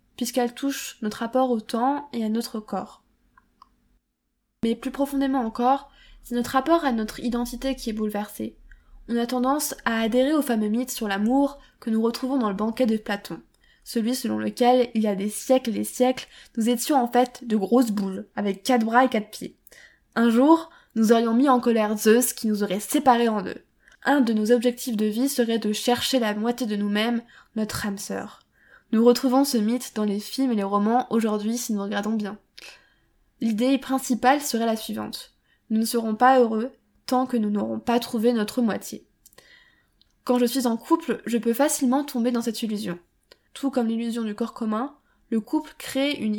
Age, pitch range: 10-29, 220-255 Hz